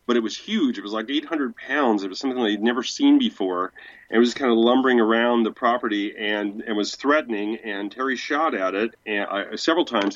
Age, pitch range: 40-59, 110-145 Hz